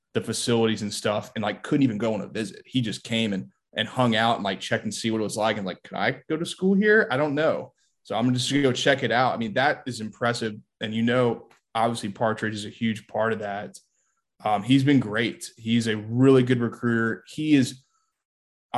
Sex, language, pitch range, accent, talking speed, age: male, English, 110-125 Hz, American, 245 wpm, 20-39